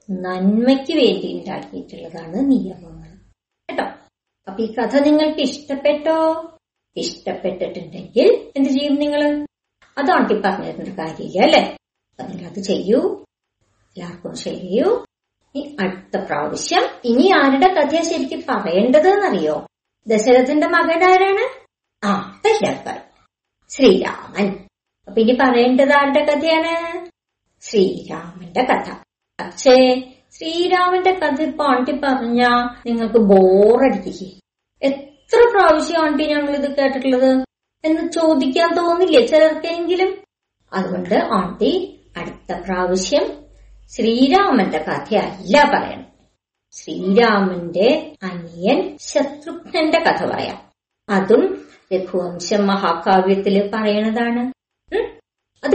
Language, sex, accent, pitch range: Malayalam, male, native, 205-320 Hz